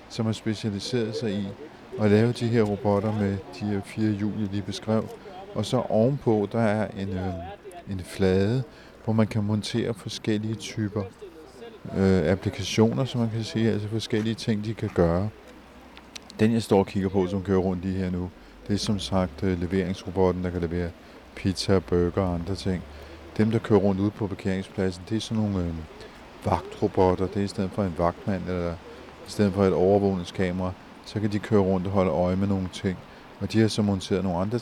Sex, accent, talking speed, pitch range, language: male, native, 200 wpm, 95-105 Hz, Danish